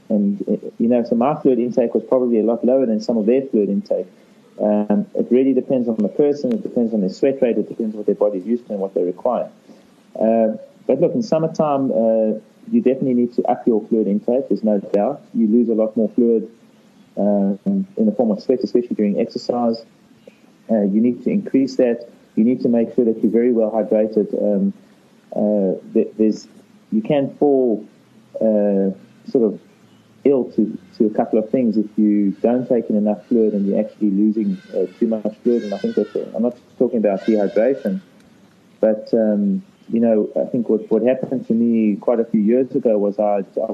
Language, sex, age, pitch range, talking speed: English, male, 30-49, 105-125 Hz, 210 wpm